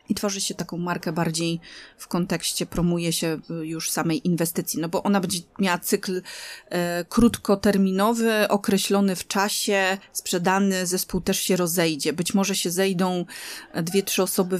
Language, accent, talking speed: Polish, native, 145 wpm